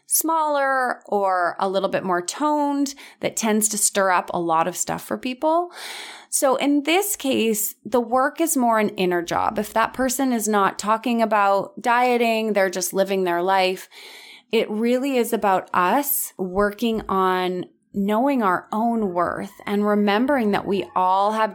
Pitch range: 185-235 Hz